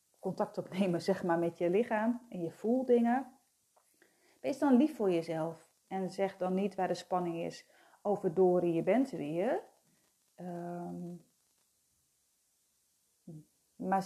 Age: 40-59